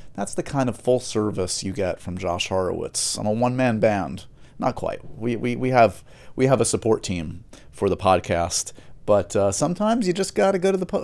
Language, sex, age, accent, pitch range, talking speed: English, male, 30-49, American, 100-160 Hz, 205 wpm